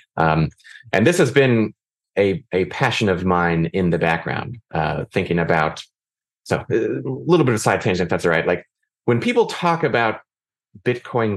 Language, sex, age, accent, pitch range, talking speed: English, male, 30-49, American, 90-120 Hz, 175 wpm